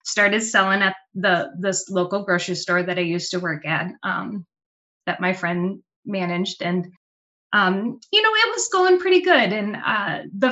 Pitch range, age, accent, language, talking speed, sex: 180-225 Hz, 20-39, American, English, 175 wpm, female